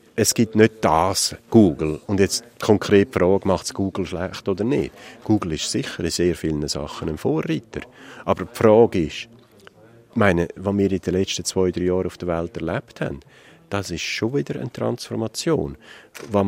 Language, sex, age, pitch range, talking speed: German, male, 50-69, 85-110 Hz, 180 wpm